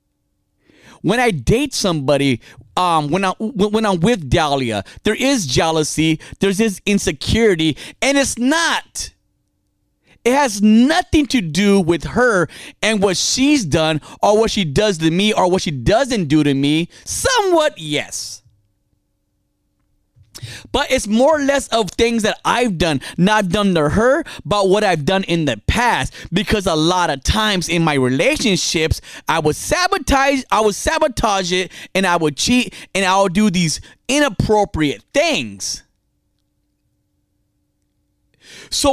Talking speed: 145 wpm